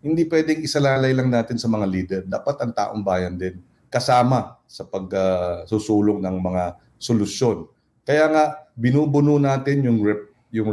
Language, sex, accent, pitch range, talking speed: English, male, Filipino, 105-145 Hz, 150 wpm